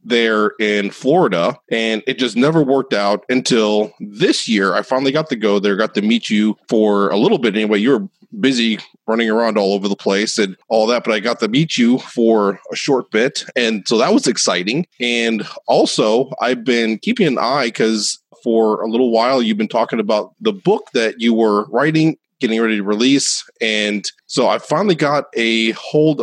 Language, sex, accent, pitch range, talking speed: English, male, American, 105-125 Hz, 195 wpm